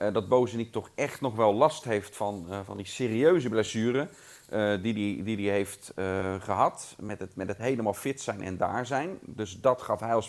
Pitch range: 100-125 Hz